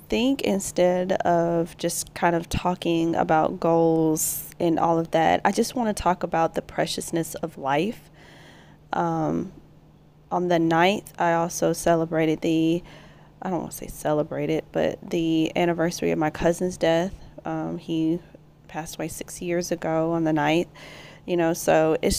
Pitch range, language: 160-180 Hz, English